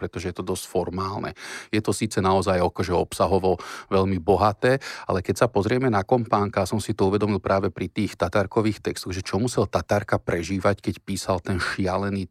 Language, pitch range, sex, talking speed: Slovak, 100-115 Hz, male, 185 wpm